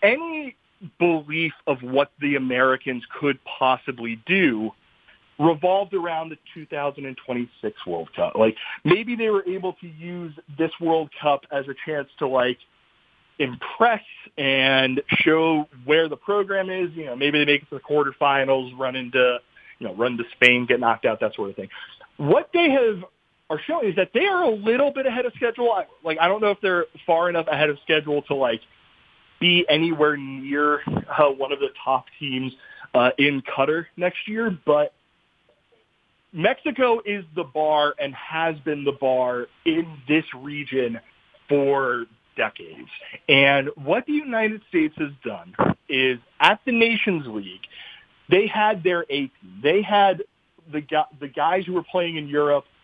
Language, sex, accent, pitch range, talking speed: English, male, American, 135-180 Hz, 165 wpm